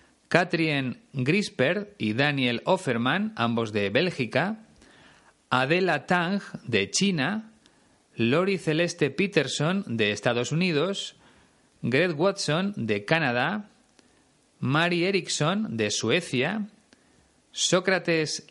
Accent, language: Spanish, Spanish